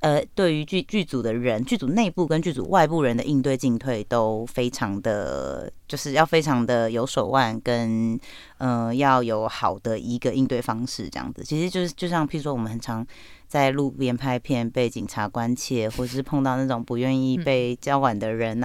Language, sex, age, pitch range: Chinese, female, 30-49, 125-160 Hz